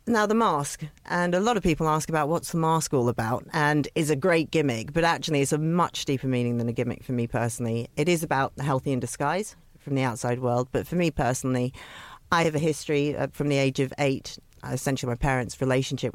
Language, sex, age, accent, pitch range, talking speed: English, female, 40-59, British, 130-160 Hz, 225 wpm